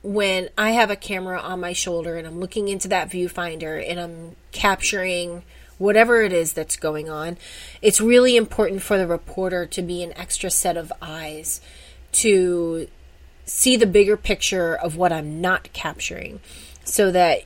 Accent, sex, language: American, female, English